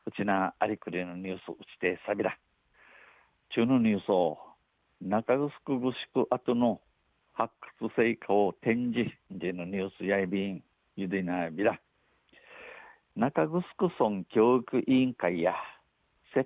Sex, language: male, Japanese